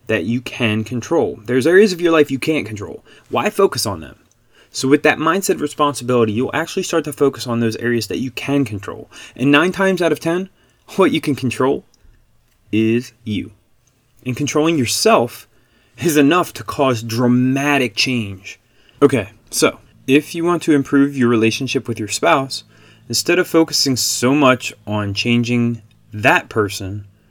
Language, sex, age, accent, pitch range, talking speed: English, male, 20-39, American, 110-140 Hz, 165 wpm